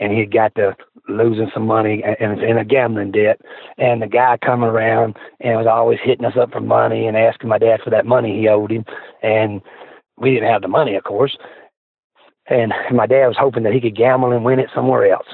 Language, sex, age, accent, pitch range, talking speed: English, male, 40-59, American, 110-125 Hz, 225 wpm